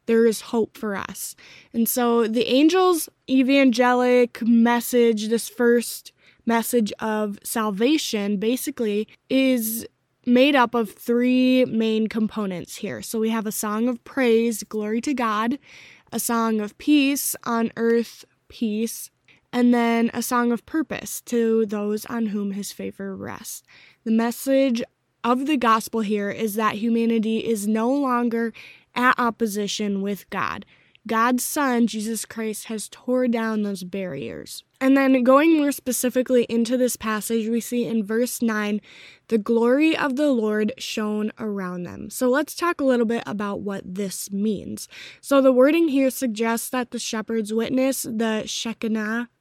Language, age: English, 10-29